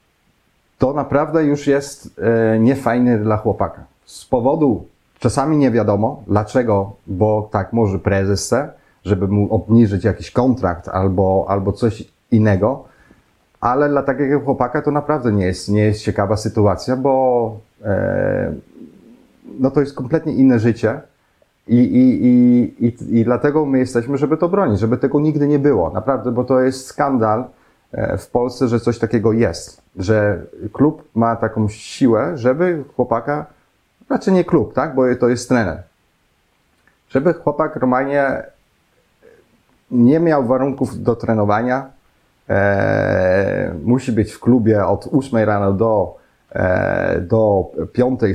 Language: Polish